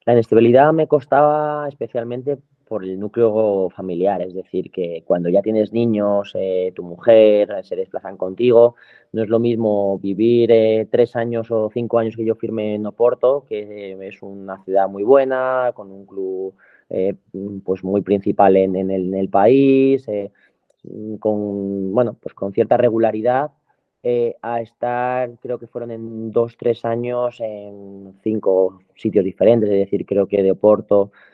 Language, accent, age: Spanish, Spanish, 20-39